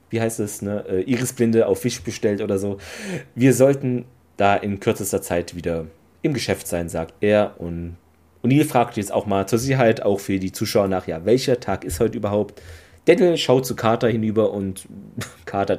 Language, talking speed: German, 190 wpm